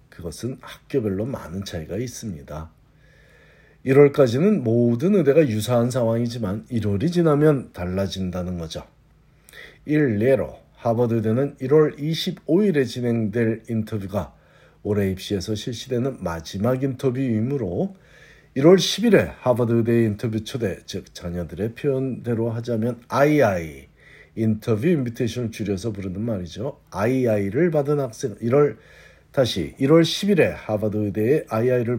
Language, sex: Korean, male